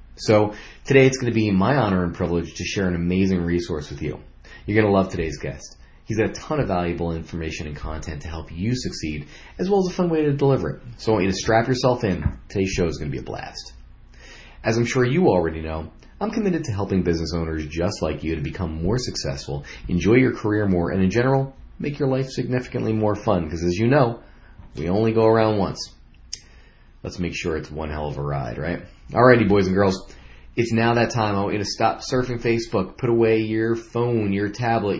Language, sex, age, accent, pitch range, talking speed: English, male, 30-49, American, 80-115 Hz, 230 wpm